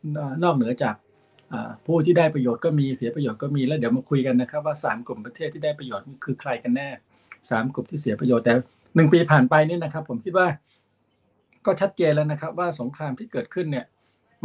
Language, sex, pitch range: Thai, male, 125-155 Hz